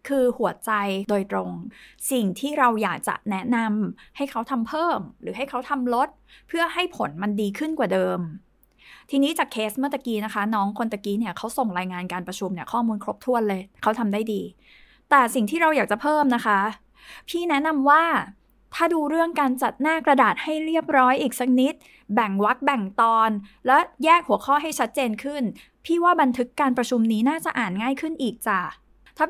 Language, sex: Thai, female